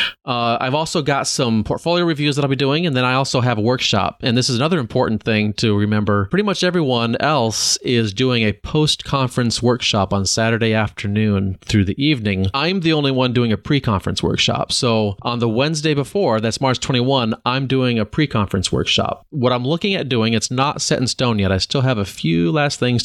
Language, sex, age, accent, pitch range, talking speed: English, male, 30-49, American, 110-135 Hz, 210 wpm